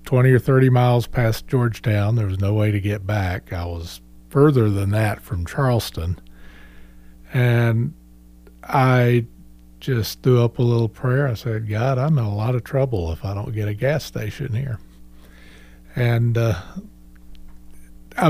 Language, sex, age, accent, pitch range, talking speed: English, male, 50-69, American, 90-125 Hz, 155 wpm